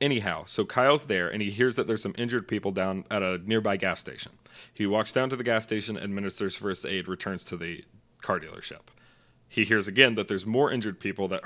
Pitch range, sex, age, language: 95-115 Hz, male, 30-49, English